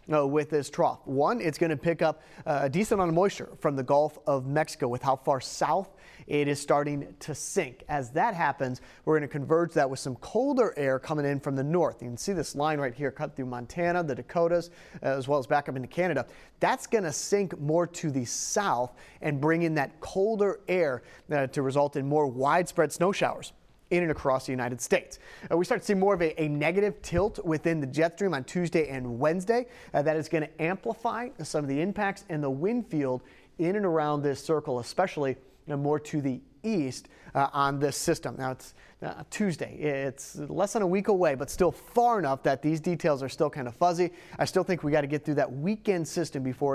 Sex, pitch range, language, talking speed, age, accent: male, 140-175 Hz, English, 225 wpm, 30-49, American